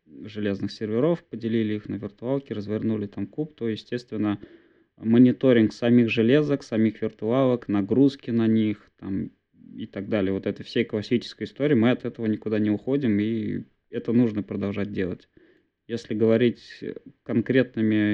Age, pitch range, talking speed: 20-39, 105-125 Hz, 140 wpm